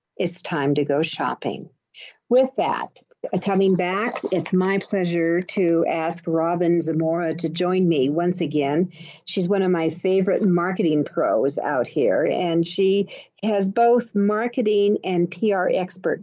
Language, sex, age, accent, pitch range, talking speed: English, female, 50-69, American, 165-205 Hz, 140 wpm